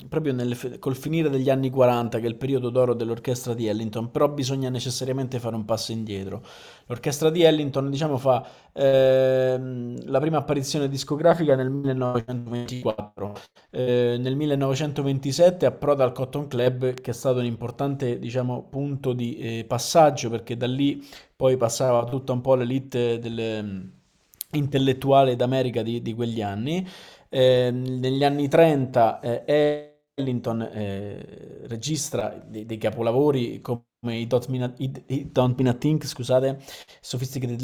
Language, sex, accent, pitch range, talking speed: Italian, male, native, 120-140 Hz, 130 wpm